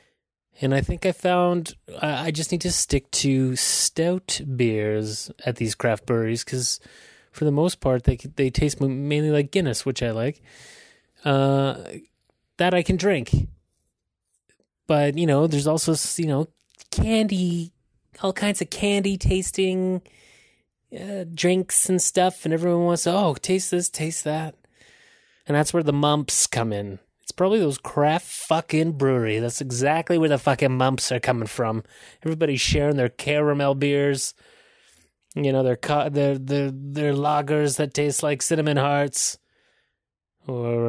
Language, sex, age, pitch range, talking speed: English, male, 20-39, 130-170 Hz, 150 wpm